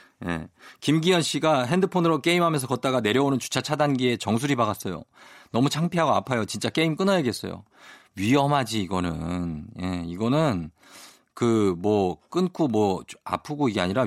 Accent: native